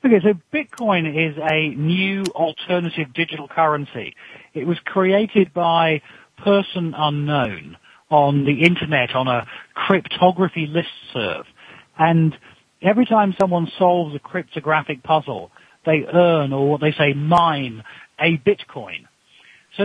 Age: 40-59